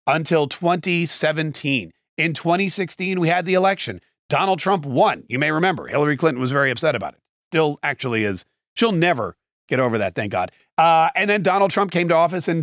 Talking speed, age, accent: 190 wpm, 40-59, American